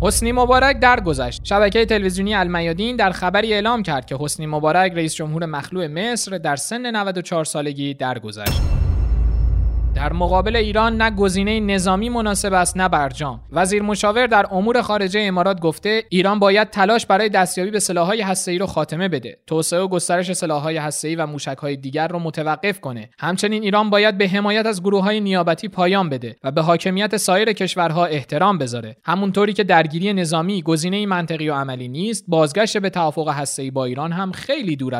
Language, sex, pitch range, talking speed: Persian, male, 145-200 Hz, 165 wpm